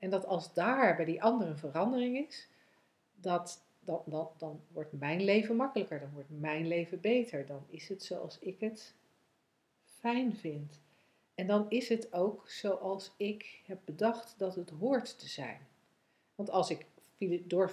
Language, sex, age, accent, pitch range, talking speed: Dutch, female, 40-59, Dutch, 165-200 Hz, 165 wpm